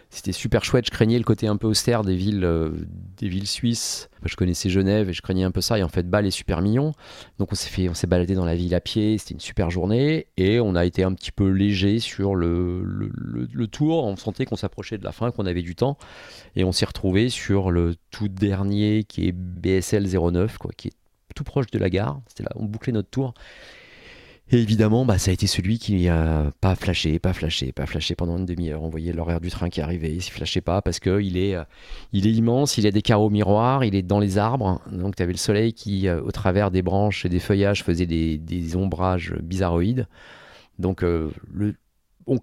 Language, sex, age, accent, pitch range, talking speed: French, male, 30-49, French, 85-105 Hz, 235 wpm